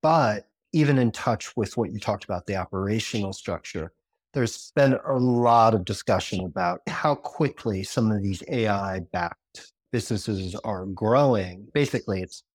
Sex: male